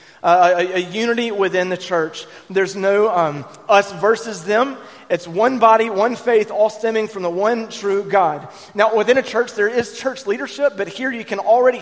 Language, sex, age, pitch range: English, male, 30-49, 165-220 Hz